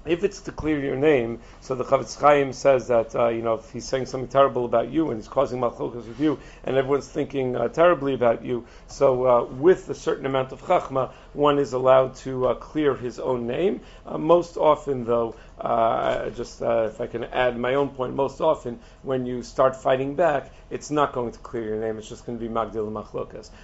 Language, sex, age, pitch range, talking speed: English, male, 40-59, 115-140 Hz, 220 wpm